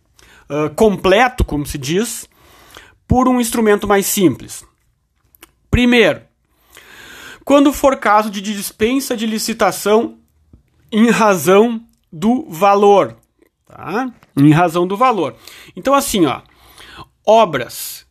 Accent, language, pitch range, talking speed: Brazilian, Portuguese, 170-255 Hz, 105 wpm